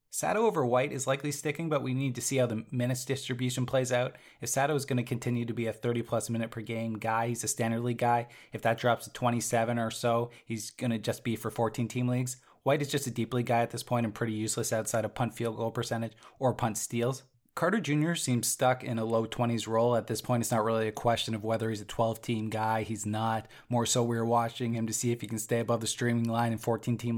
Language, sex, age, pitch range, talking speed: English, male, 20-39, 115-130 Hz, 260 wpm